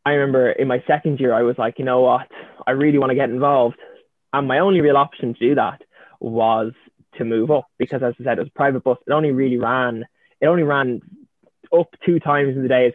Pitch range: 120-140 Hz